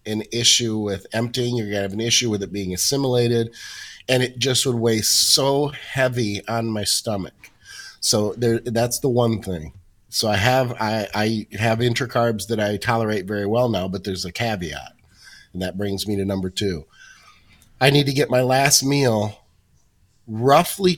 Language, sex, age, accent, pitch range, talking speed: English, male, 30-49, American, 105-125 Hz, 175 wpm